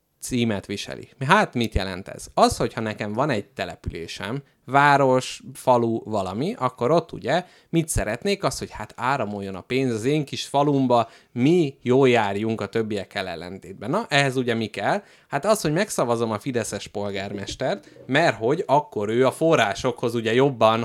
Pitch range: 110-145 Hz